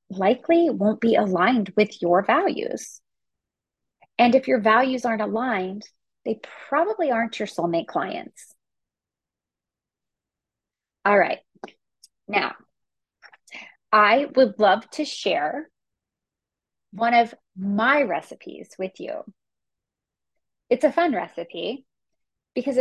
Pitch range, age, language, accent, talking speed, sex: 185-255 Hz, 30-49, English, American, 100 wpm, female